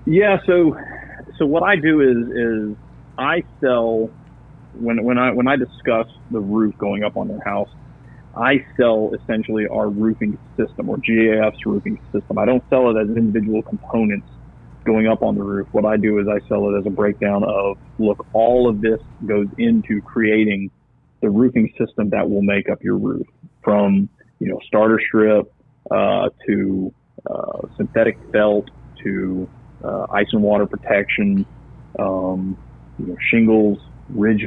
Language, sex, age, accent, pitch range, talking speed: English, male, 40-59, American, 105-115 Hz, 160 wpm